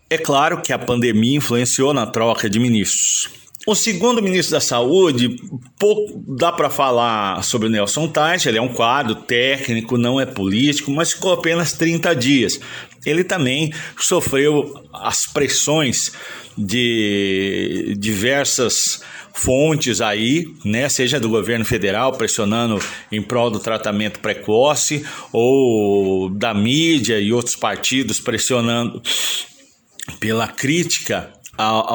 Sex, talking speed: male, 125 wpm